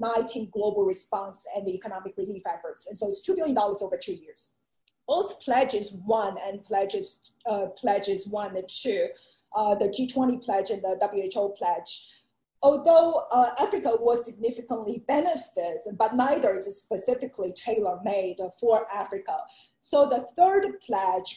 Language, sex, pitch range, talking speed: English, female, 200-255 Hz, 150 wpm